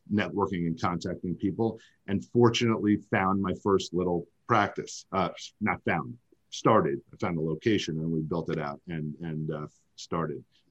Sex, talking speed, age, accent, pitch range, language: male, 155 wpm, 40-59, American, 95-125 Hz, English